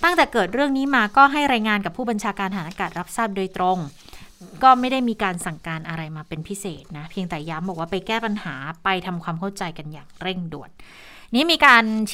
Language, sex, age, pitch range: Thai, female, 20-39, 180-235 Hz